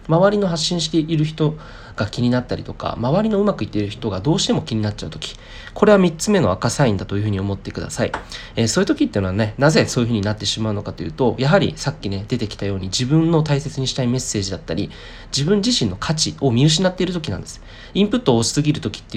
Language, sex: Japanese, male